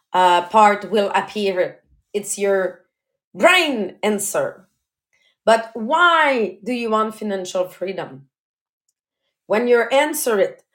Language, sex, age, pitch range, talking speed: English, female, 30-49, 215-300 Hz, 105 wpm